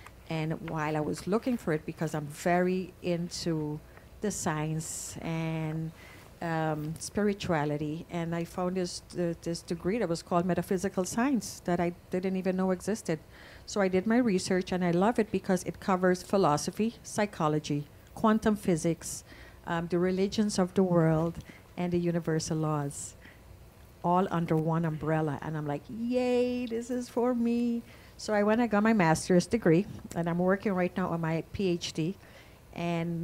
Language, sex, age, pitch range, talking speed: English, female, 50-69, 160-205 Hz, 160 wpm